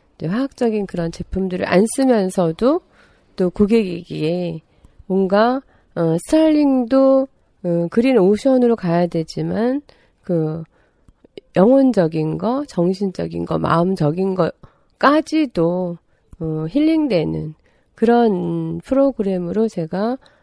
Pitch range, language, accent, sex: 170-255 Hz, Korean, native, female